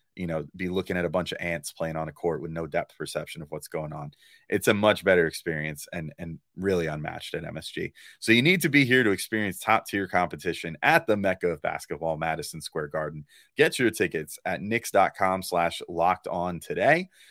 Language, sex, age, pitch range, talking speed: English, male, 30-49, 80-105 Hz, 210 wpm